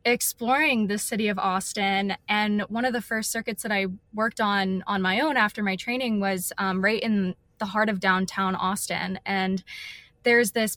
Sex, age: female, 10-29